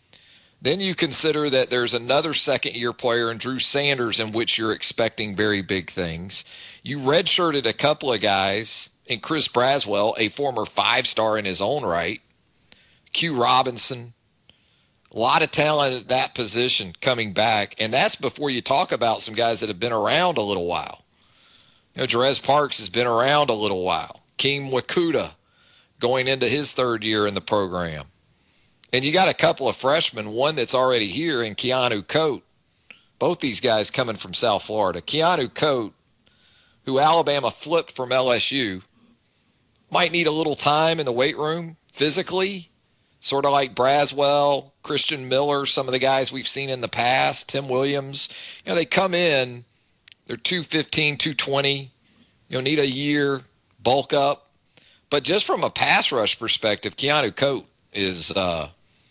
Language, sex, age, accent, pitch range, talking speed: English, male, 40-59, American, 110-145 Hz, 160 wpm